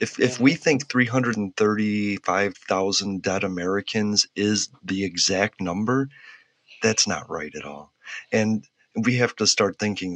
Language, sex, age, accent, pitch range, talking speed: English, male, 30-49, American, 95-110 Hz, 130 wpm